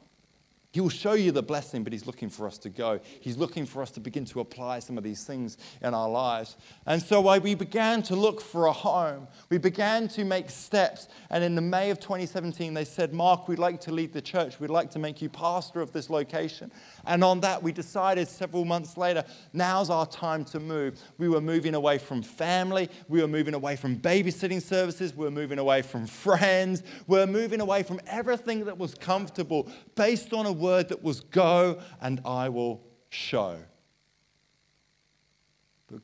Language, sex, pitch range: English, male, 115-180 Hz